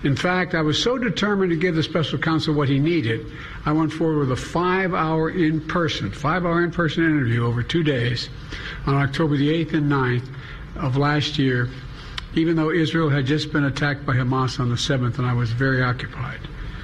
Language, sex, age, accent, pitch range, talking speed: English, male, 60-79, American, 140-165 Hz, 190 wpm